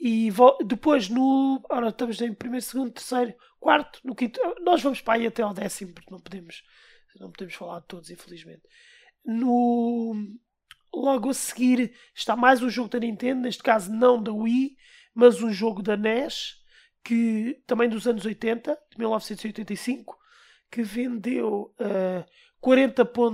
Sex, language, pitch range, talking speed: male, Portuguese, 205-250 Hz, 135 wpm